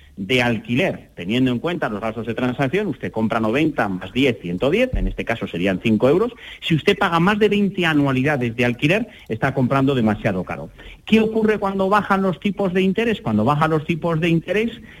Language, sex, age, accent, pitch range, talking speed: Spanish, male, 40-59, Spanish, 125-185 Hz, 190 wpm